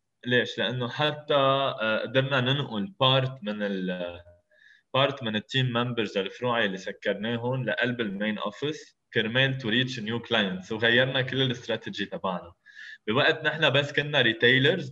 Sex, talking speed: male, 135 wpm